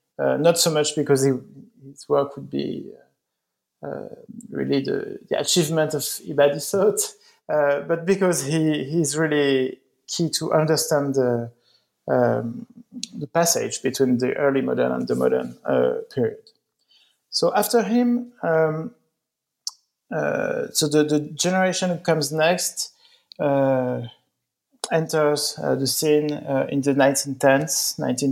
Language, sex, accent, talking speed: English, male, French, 125 wpm